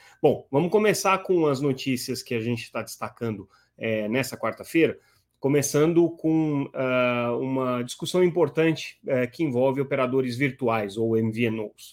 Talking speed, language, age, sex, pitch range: 120 wpm, Portuguese, 30-49, male, 115-160 Hz